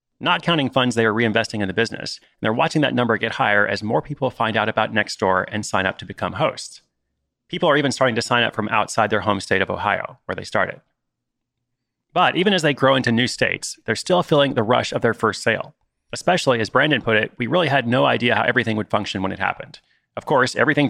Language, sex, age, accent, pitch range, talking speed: English, male, 30-49, American, 105-140 Hz, 235 wpm